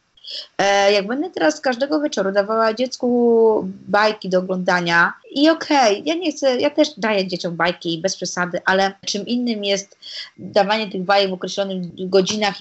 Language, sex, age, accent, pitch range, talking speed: Polish, female, 20-39, native, 190-255 Hz, 155 wpm